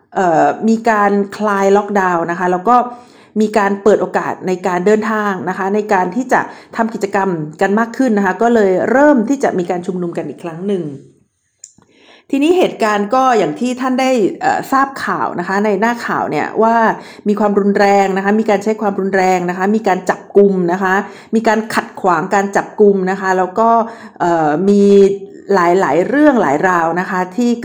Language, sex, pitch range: Thai, female, 195-245 Hz